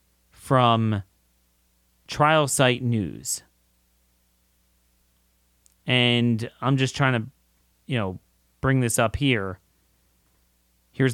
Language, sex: English, male